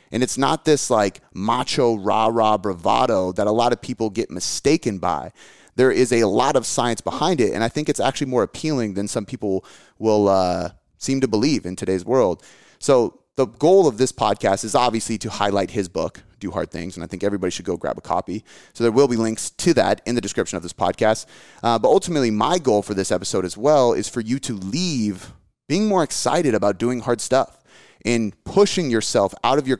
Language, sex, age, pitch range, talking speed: English, male, 30-49, 105-135 Hz, 215 wpm